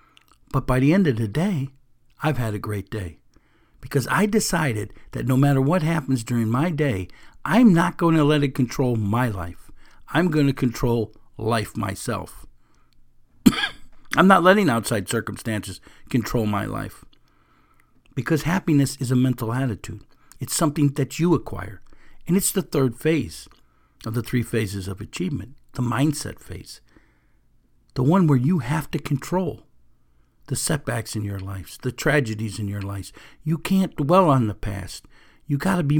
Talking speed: 165 wpm